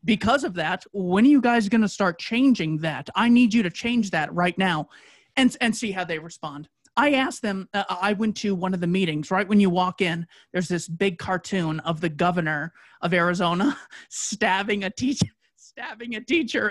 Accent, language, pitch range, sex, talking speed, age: American, English, 175-220 Hz, male, 205 wpm, 30-49